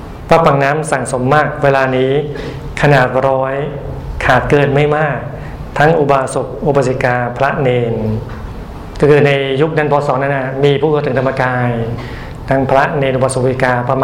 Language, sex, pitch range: Thai, male, 125-145 Hz